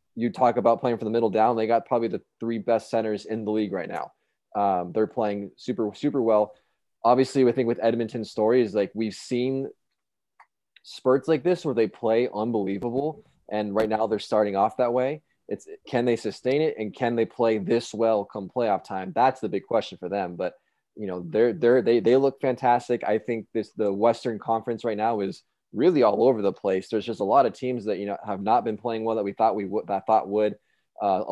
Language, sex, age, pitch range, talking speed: English, male, 20-39, 105-120 Hz, 225 wpm